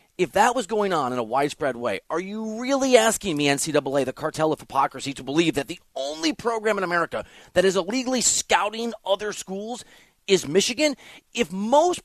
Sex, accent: male, American